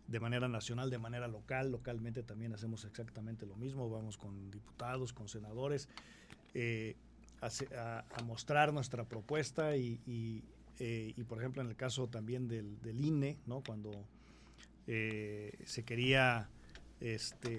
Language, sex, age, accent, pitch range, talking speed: Spanish, male, 40-59, Mexican, 110-135 Hz, 145 wpm